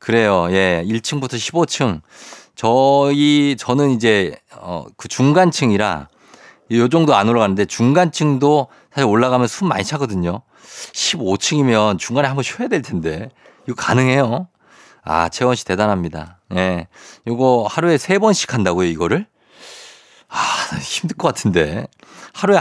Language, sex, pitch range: Korean, male, 100-150 Hz